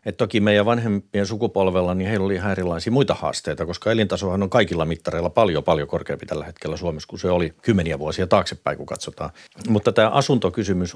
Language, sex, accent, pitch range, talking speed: Finnish, male, native, 85-100 Hz, 190 wpm